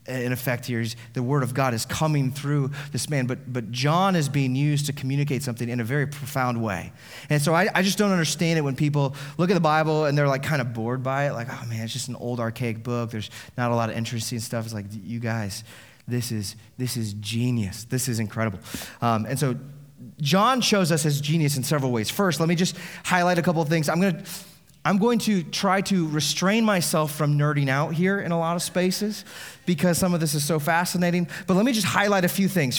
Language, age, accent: English, 30-49, American